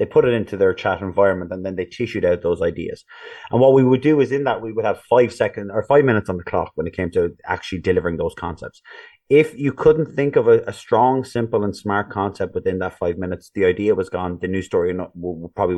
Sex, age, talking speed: male, 30-49, 245 wpm